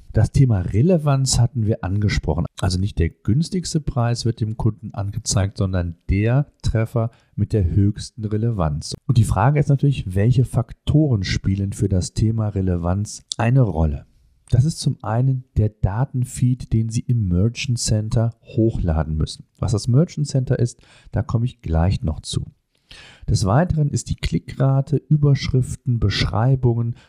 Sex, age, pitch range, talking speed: male, 40-59, 105-135 Hz, 150 wpm